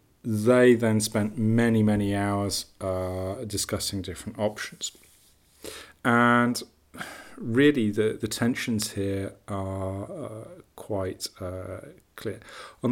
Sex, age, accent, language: male, 40-59, British, English